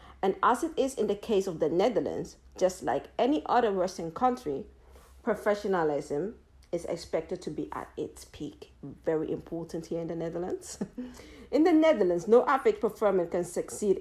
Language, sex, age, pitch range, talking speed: English, female, 50-69, 180-250 Hz, 165 wpm